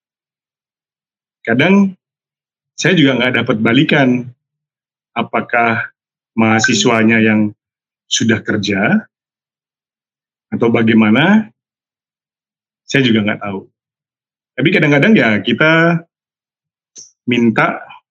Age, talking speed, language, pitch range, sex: 30-49, 75 wpm, Malay, 115-165 Hz, male